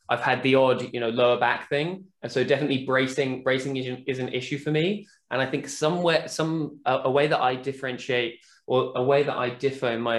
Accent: British